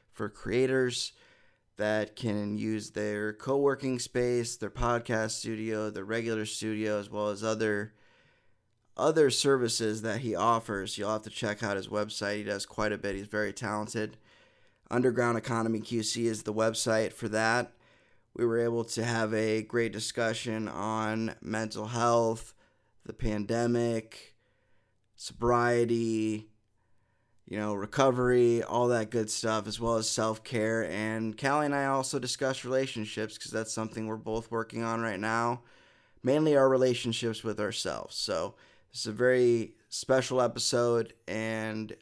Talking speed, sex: 145 wpm, male